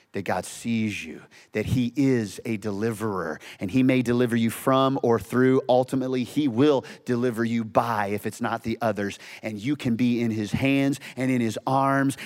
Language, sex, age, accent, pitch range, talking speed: English, male, 30-49, American, 115-170 Hz, 190 wpm